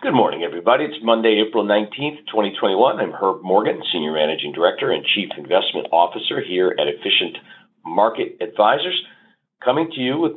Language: English